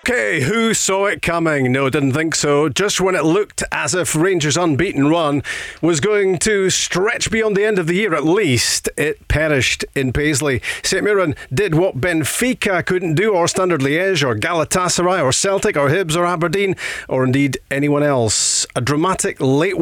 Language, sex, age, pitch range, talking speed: English, male, 40-59, 140-185 Hz, 180 wpm